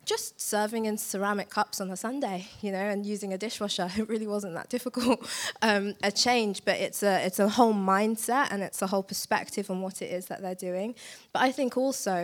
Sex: female